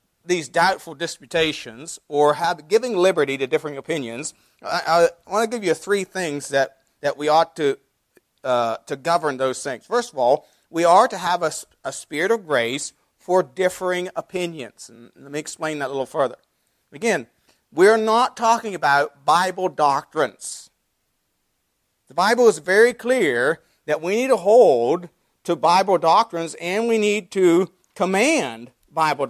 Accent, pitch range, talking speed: American, 150-200 Hz, 160 wpm